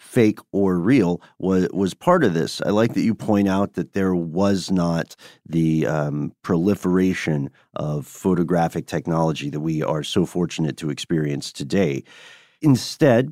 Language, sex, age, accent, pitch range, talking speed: English, male, 40-59, American, 90-125 Hz, 150 wpm